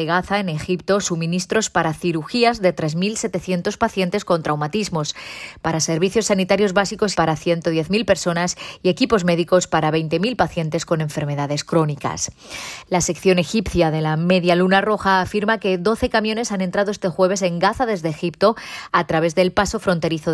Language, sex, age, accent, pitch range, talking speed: Spanish, female, 20-39, Spanish, 165-200 Hz, 155 wpm